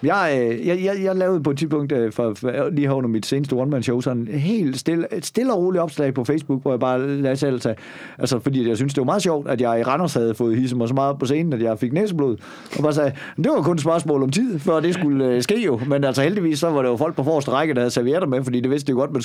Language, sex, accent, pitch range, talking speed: Danish, male, native, 135-180 Hz, 290 wpm